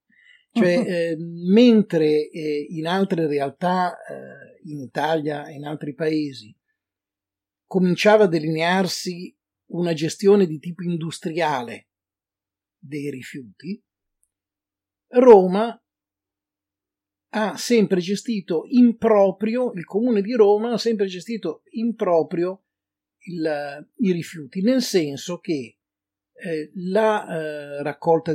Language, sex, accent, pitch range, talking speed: Italian, male, native, 145-210 Hz, 105 wpm